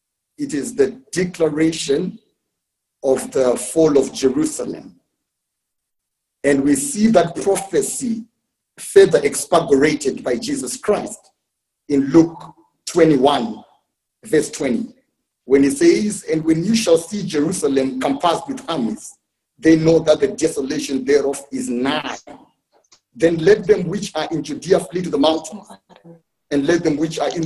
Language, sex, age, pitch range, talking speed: English, male, 50-69, 150-225 Hz, 135 wpm